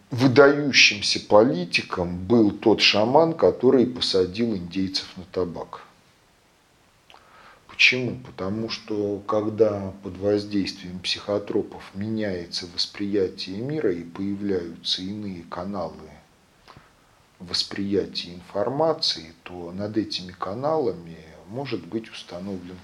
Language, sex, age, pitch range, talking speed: Russian, male, 40-59, 90-115 Hz, 85 wpm